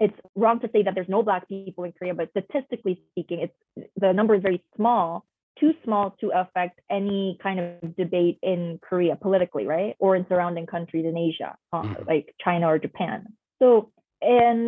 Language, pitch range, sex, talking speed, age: English, 180-225 Hz, female, 185 wpm, 20-39